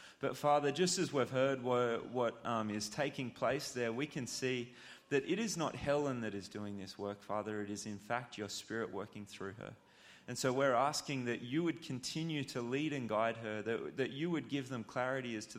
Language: English